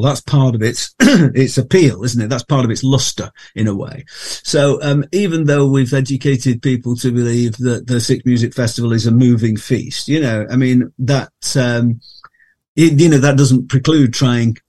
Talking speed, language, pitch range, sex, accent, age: 190 wpm, English, 115-135 Hz, male, British, 50-69